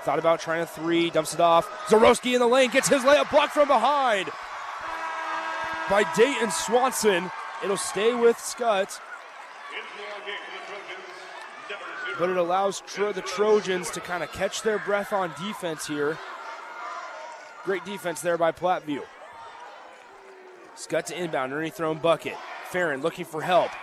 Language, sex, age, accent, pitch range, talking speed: English, male, 30-49, American, 165-220 Hz, 135 wpm